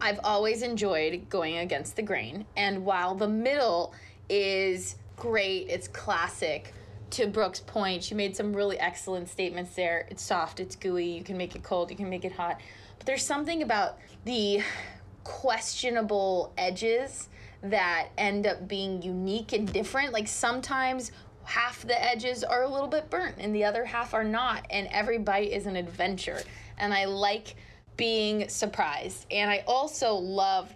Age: 20-39